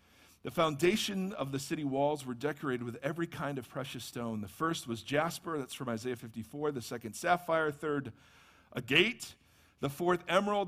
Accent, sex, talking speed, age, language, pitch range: American, male, 180 wpm, 50-69, English, 130-180 Hz